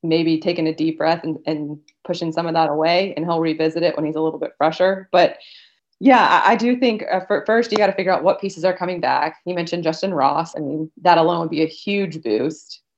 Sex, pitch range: female, 160-180 Hz